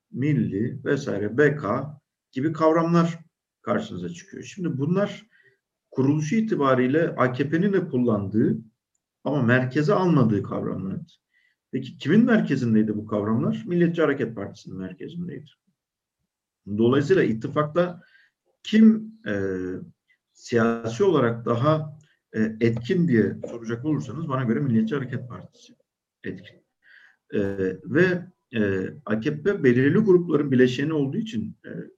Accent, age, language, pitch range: native, 50-69, Turkish, 115-165 Hz